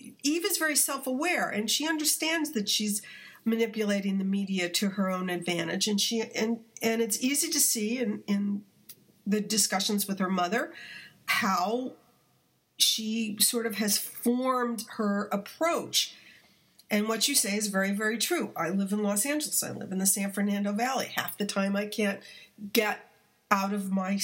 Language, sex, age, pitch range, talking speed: English, female, 50-69, 195-235 Hz, 170 wpm